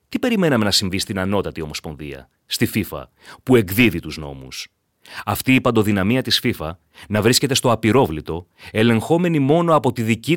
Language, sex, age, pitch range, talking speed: Greek, male, 30-49, 95-140 Hz, 155 wpm